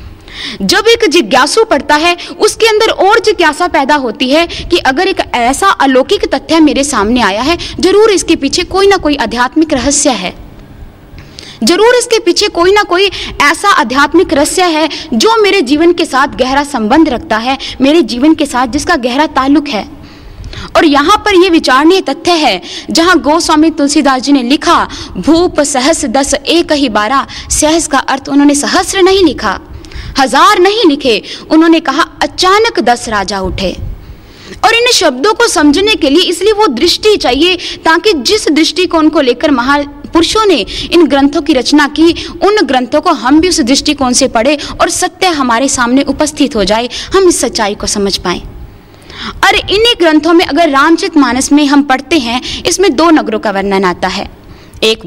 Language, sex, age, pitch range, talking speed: Hindi, female, 20-39, 265-350 Hz, 135 wpm